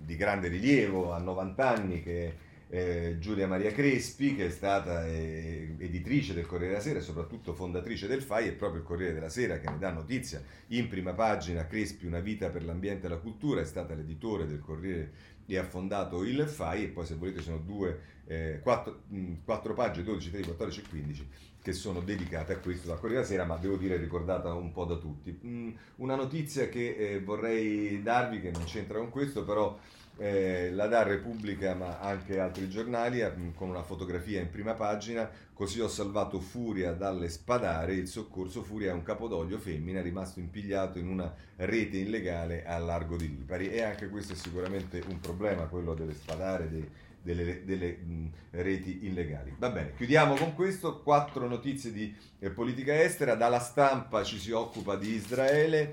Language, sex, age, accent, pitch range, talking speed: Italian, male, 40-59, native, 85-110 Hz, 185 wpm